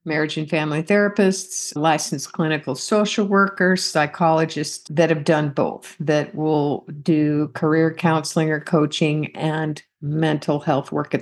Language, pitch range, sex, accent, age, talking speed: English, 155-185 Hz, female, American, 50-69, 135 wpm